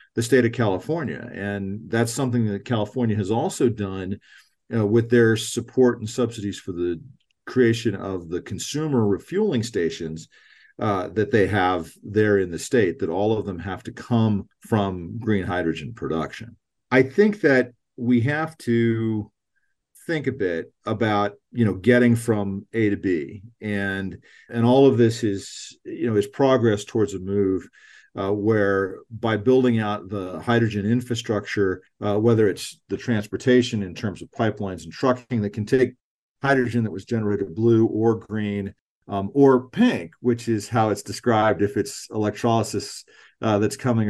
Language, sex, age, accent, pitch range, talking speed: English, male, 50-69, American, 100-120 Hz, 160 wpm